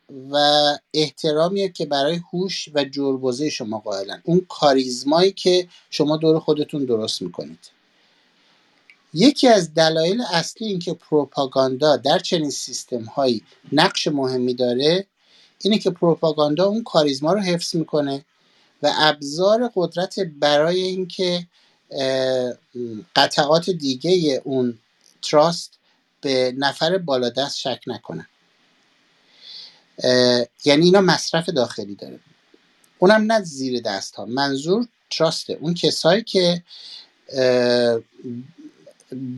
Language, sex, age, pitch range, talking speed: Persian, male, 50-69, 130-180 Hz, 105 wpm